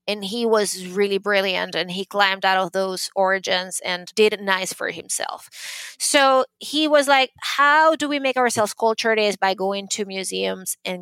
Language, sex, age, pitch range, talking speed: English, female, 30-49, 190-235 Hz, 190 wpm